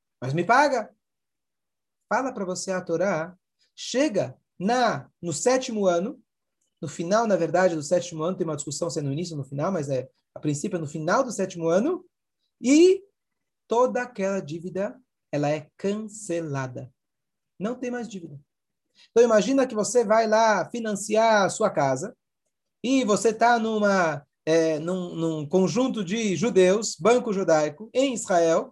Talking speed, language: 155 wpm, Portuguese